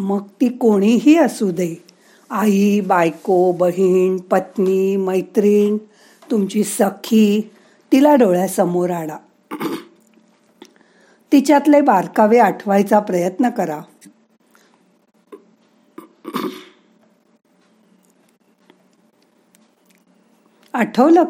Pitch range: 195-245 Hz